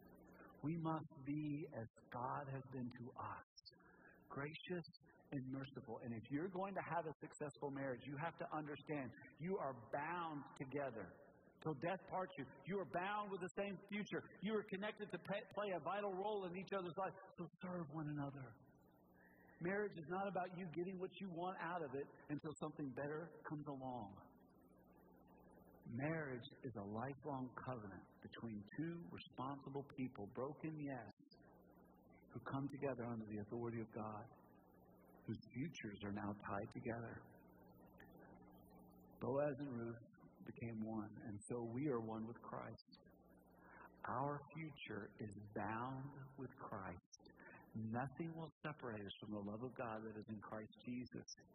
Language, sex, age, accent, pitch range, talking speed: English, male, 50-69, American, 110-160 Hz, 155 wpm